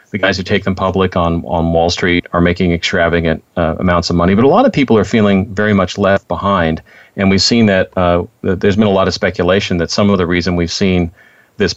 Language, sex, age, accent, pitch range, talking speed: English, male, 40-59, American, 90-105 Hz, 245 wpm